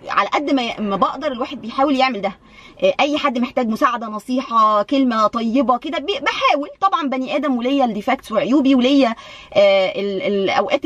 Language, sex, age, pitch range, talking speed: Arabic, female, 20-39, 245-295 Hz, 145 wpm